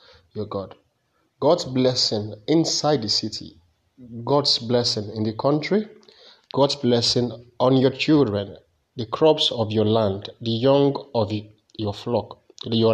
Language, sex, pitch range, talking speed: English, male, 110-145 Hz, 135 wpm